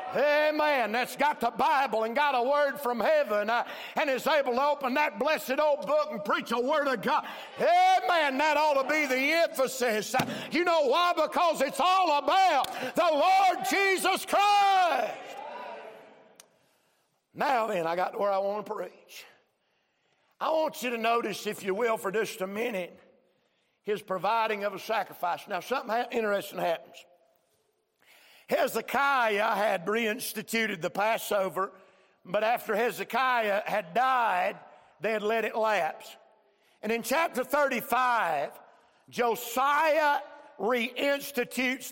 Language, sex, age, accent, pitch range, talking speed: English, male, 50-69, American, 215-290 Hz, 135 wpm